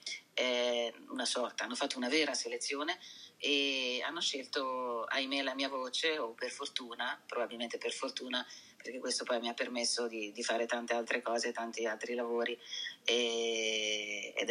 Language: Italian